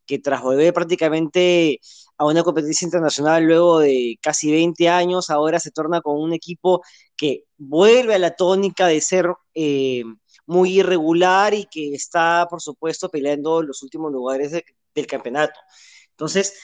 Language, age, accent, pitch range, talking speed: Spanish, 20-39, Argentinian, 155-195 Hz, 150 wpm